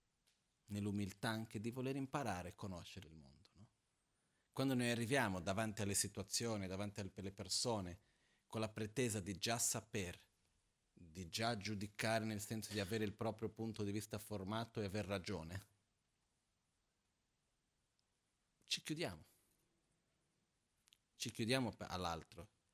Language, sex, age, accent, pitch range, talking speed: Italian, male, 40-59, native, 95-115 Hz, 120 wpm